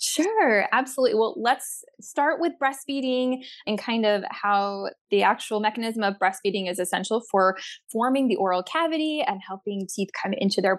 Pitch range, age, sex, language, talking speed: 200-255 Hz, 10-29, female, English, 160 wpm